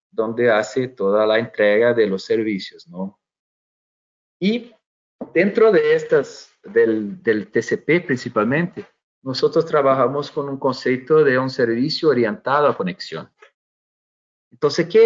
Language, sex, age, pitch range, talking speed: Spanish, male, 40-59, 115-170 Hz, 120 wpm